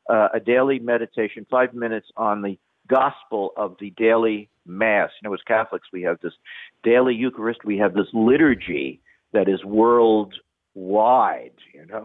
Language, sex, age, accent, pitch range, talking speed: English, male, 50-69, American, 105-150 Hz, 160 wpm